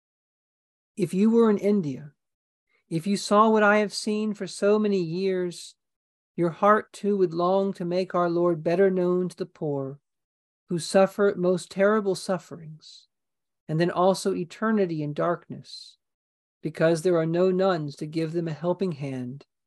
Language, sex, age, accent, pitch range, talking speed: English, male, 50-69, American, 160-200 Hz, 160 wpm